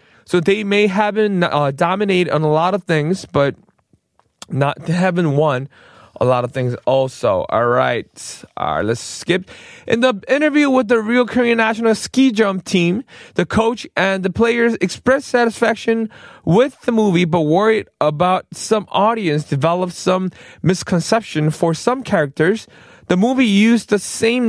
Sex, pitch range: male, 165-225 Hz